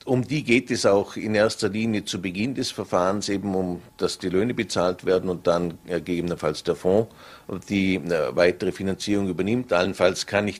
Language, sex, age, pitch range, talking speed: German, male, 50-69, 95-110 Hz, 185 wpm